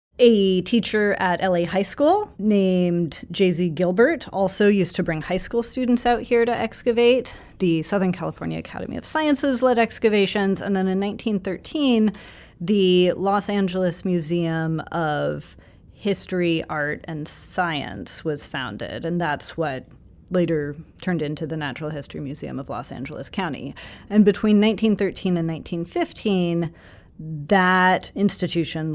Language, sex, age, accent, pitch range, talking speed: English, female, 30-49, American, 155-205 Hz, 135 wpm